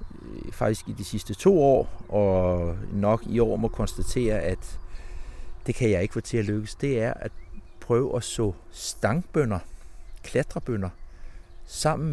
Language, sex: Danish, male